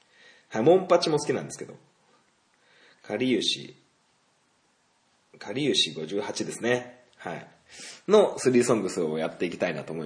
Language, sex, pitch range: Japanese, male, 110-185 Hz